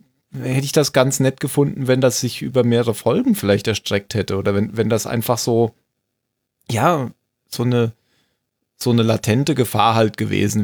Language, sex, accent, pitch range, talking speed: German, male, German, 110-135 Hz, 170 wpm